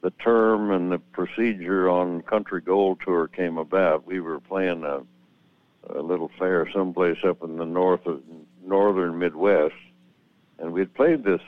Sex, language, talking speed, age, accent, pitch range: male, English, 155 wpm, 60-79, American, 90-110 Hz